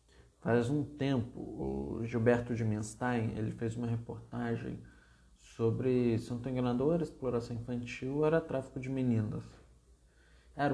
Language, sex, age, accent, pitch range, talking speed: Portuguese, male, 20-39, Brazilian, 105-145 Hz, 115 wpm